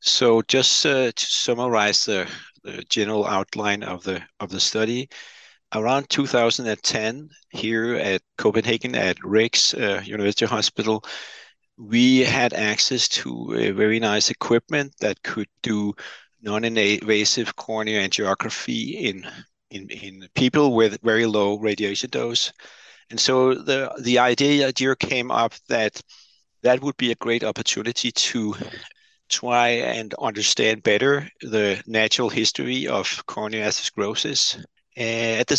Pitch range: 110-125 Hz